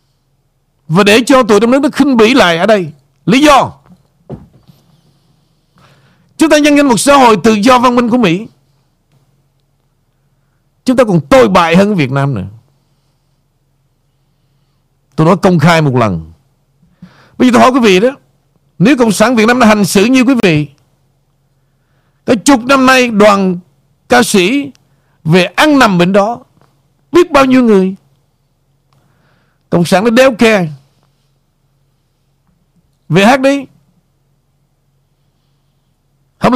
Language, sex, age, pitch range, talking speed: Vietnamese, male, 60-79, 140-210 Hz, 140 wpm